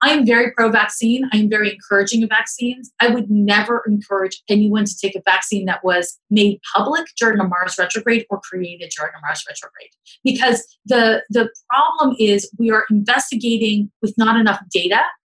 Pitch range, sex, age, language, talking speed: 195-240 Hz, female, 30-49, English, 170 wpm